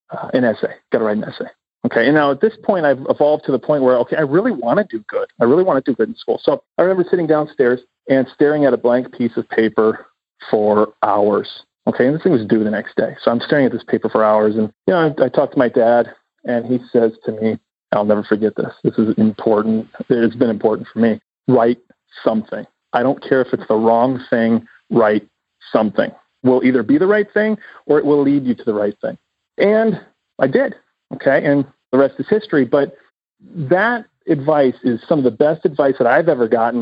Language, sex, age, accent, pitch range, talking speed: English, male, 40-59, American, 115-150 Hz, 230 wpm